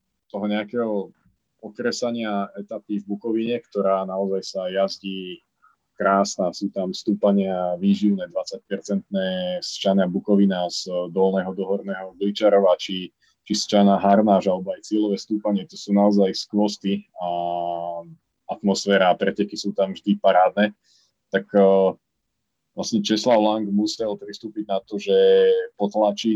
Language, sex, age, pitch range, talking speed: Slovak, male, 30-49, 95-105 Hz, 125 wpm